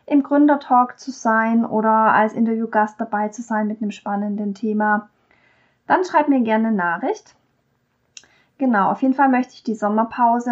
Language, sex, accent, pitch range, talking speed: German, female, German, 210-250 Hz, 160 wpm